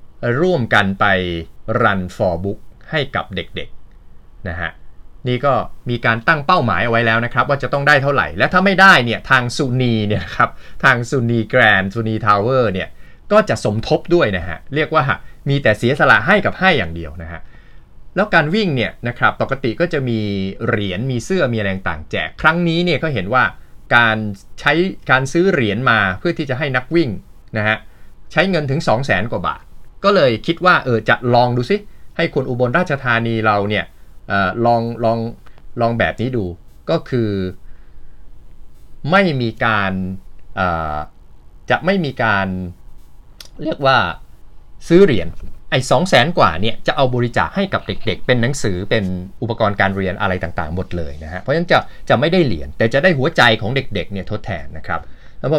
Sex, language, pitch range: male, Thai, 90-130 Hz